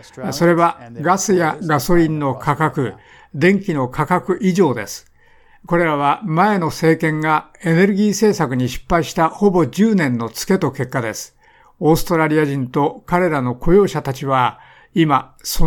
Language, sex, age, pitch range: Japanese, male, 60-79, 140-190 Hz